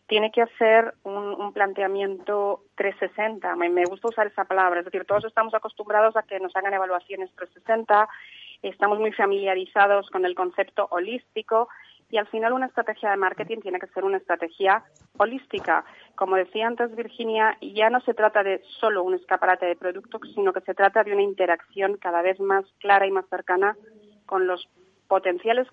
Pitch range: 190-225 Hz